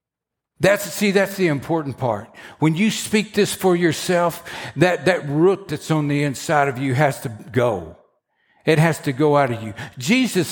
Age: 60-79